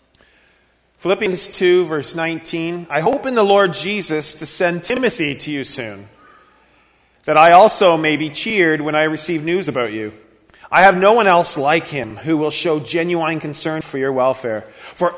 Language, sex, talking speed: English, male, 175 wpm